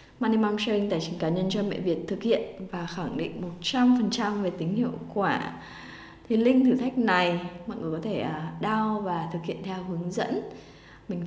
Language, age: Vietnamese, 20-39